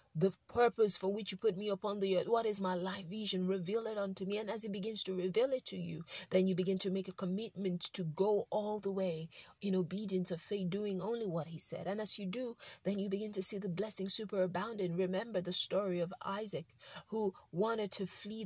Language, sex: English, female